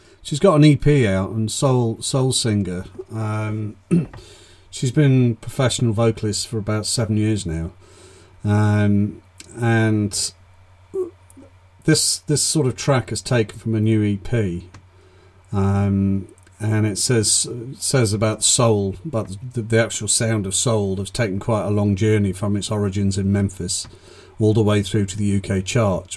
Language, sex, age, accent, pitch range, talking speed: English, male, 40-59, British, 95-115 Hz, 150 wpm